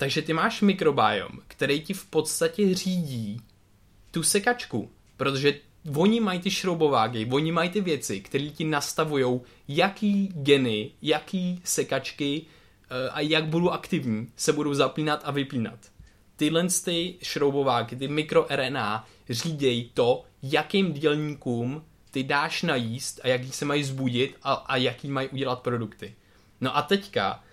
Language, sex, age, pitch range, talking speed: Czech, male, 20-39, 115-155 Hz, 135 wpm